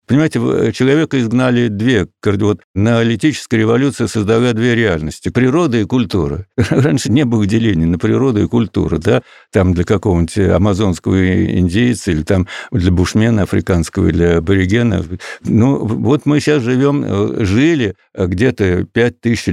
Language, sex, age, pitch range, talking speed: Russian, male, 60-79, 95-125 Hz, 130 wpm